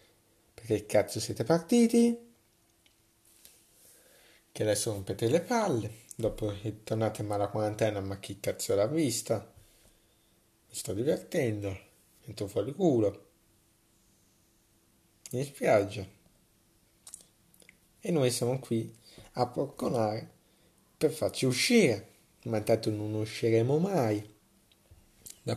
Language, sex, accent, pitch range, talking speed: Italian, male, native, 110-135 Hz, 100 wpm